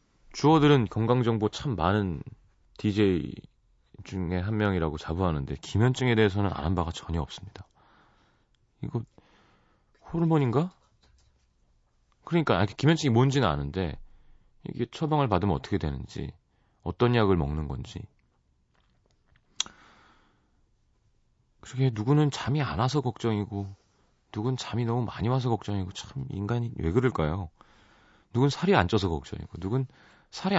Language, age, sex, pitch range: Korean, 30-49, male, 85-120 Hz